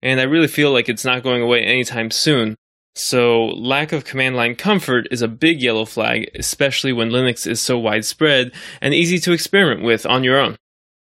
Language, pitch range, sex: English, 125-155 Hz, male